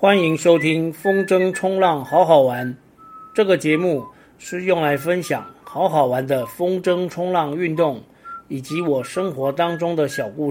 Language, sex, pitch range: Chinese, male, 145-190 Hz